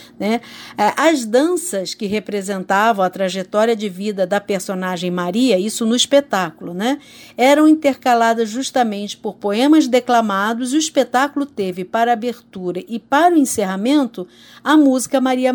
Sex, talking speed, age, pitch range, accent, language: female, 130 wpm, 50-69, 200-260 Hz, Brazilian, Portuguese